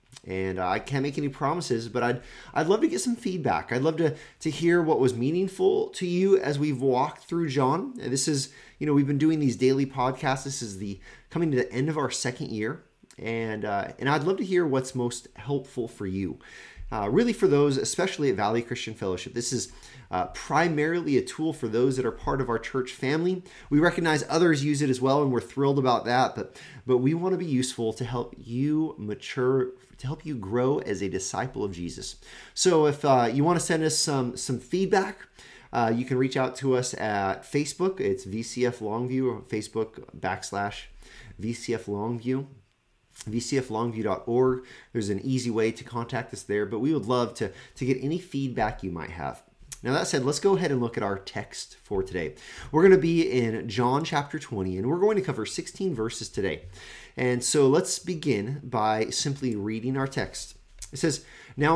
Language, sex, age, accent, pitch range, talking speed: English, male, 30-49, American, 115-150 Hz, 200 wpm